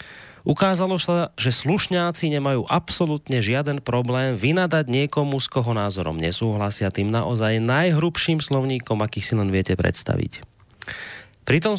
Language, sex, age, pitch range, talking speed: Slovak, male, 30-49, 105-145 Hz, 120 wpm